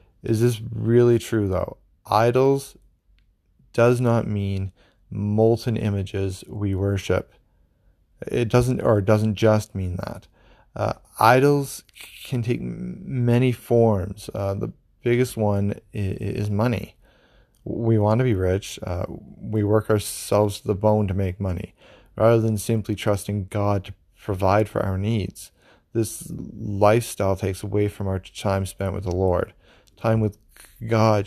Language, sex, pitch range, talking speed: English, male, 95-110 Hz, 140 wpm